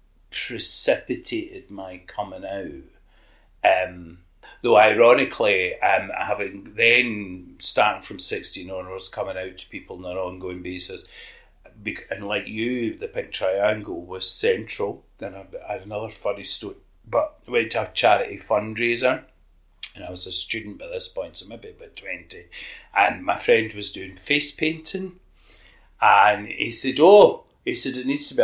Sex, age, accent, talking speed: male, 40-59, British, 150 wpm